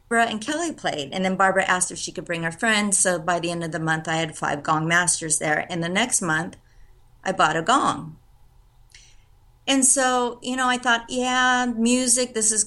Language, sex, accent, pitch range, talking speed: English, female, American, 160-215 Hz, 210 wpm